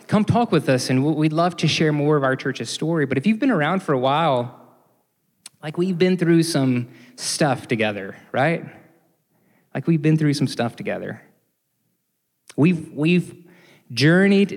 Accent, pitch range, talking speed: American, 125-160 Hz, 165 wpm